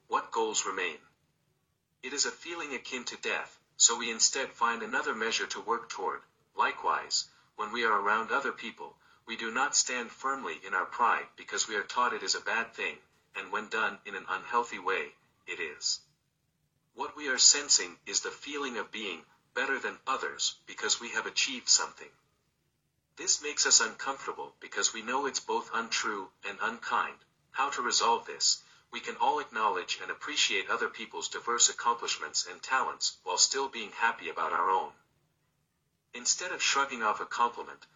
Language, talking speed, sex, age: English, 175 wpm, male, 50-69